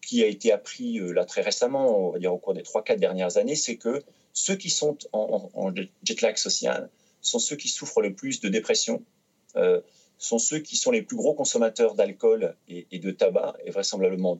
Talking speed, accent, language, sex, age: 205 wpm, French, French, male, 30-49